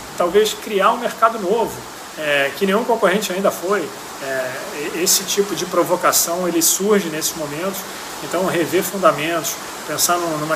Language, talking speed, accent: Portuguese, 140 wpm, Brazilian